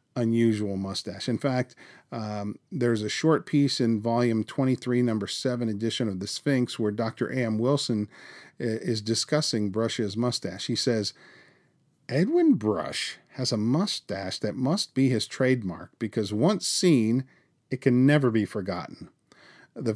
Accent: American